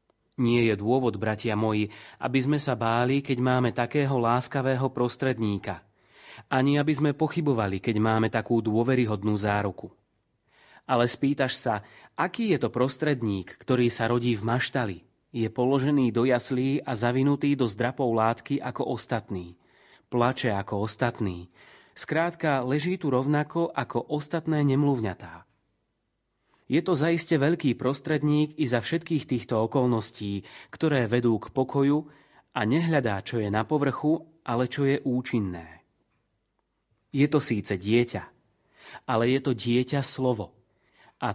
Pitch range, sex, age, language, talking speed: 110-140 Hz, male, 30-49, Slovak, 130 wpm